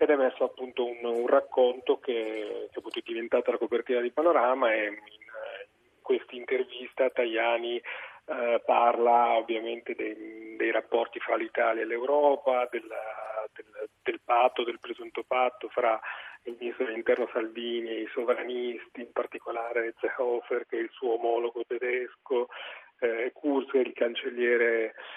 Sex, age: male, 40-59